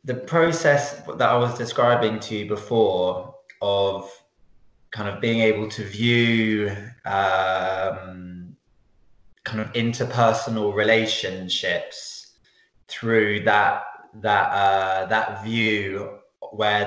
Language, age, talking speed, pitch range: English, 20-39, 100 wpm, 100-120 Hz